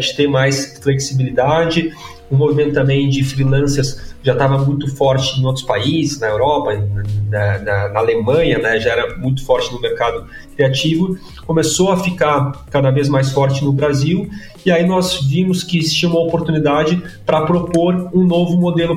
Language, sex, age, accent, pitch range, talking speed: Portuguese, male, 30-49, Brazilian, 135-165 Hz, 170 wpm